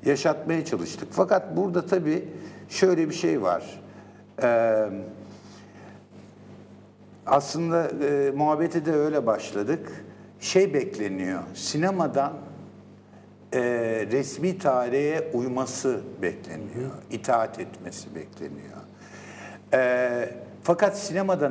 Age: 60-79